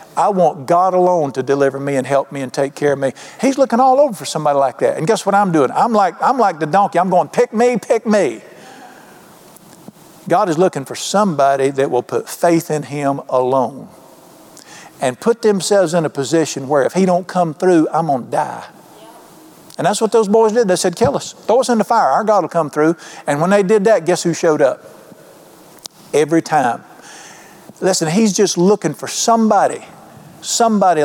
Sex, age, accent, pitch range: male, 50-69, American, 150-195 Hz